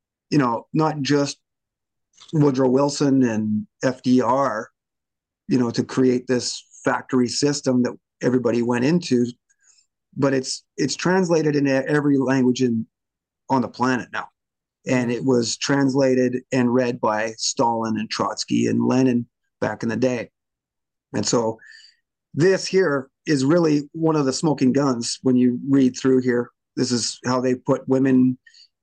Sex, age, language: male, 30-49, English